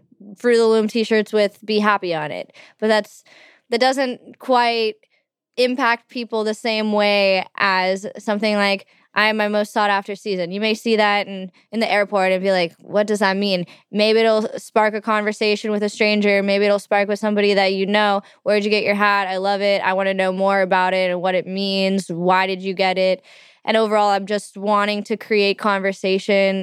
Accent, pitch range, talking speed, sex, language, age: American, 195-220 Hz, 205 wpm, female, English, 10-29